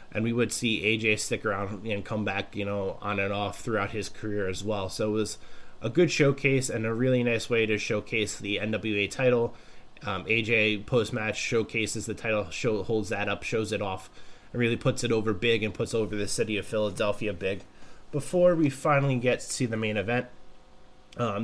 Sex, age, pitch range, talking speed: male, 20-39, 105-120 Hz, 205 wpm